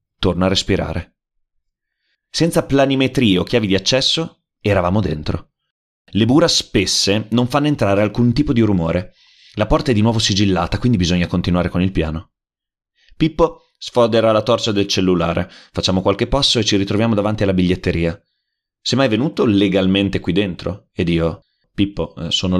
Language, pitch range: Italian, 90-110 Hz